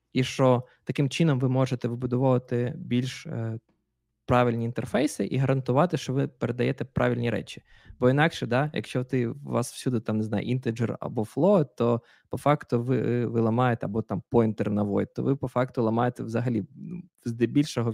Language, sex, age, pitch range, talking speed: Ukrainian, male, 20-39, 120-145 Hz, 165 wpm